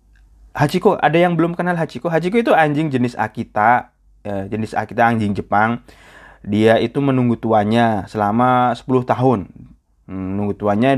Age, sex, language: 20-39, male, Indonesian